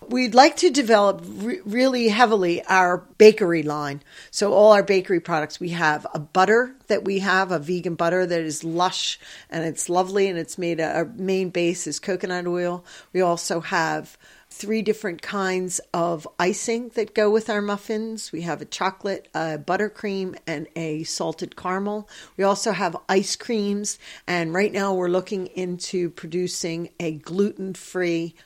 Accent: American